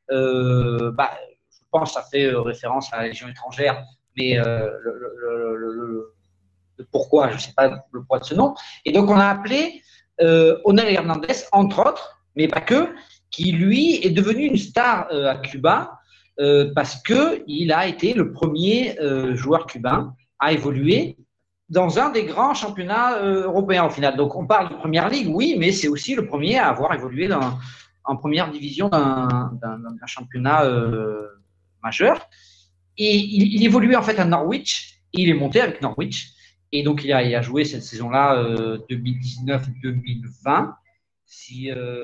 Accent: French